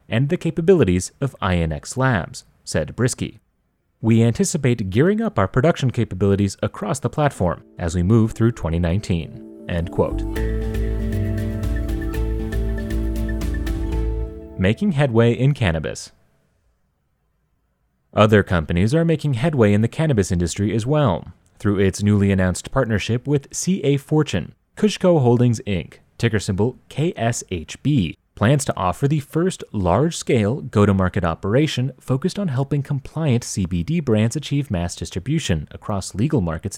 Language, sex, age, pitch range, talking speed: English, male, 30-49, 95-135 Hz, 120 wpm